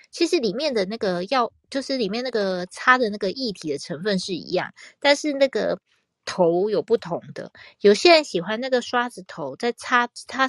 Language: Chinese